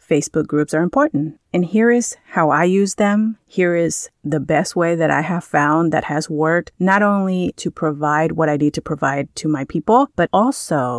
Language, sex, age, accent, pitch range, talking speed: English, female, 30-49, American, 155-185 Hz, 200 wpm